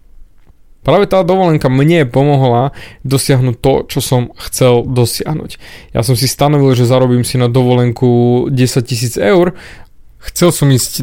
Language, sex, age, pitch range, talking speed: Slovak, male, 20-39, 125-150 Hz, 140 wpm